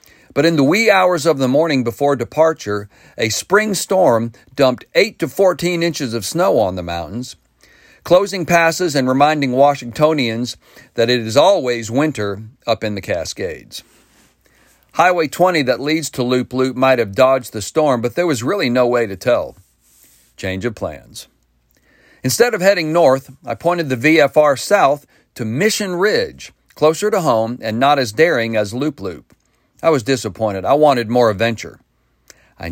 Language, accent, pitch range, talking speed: English, American, 115-155 Hz, 165 wpm